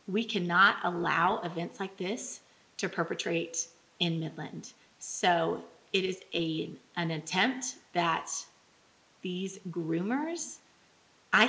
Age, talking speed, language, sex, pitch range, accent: 30-49, 100 wpm, English, female, 170-215 Hz, American